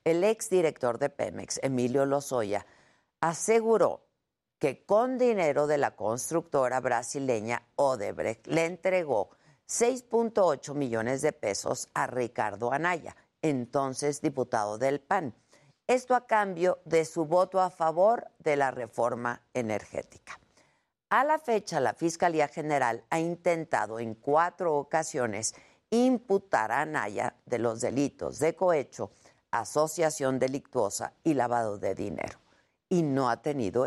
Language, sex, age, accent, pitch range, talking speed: Spanish, female, 50-69, Mexican, 130-180 Hz, 120 wpm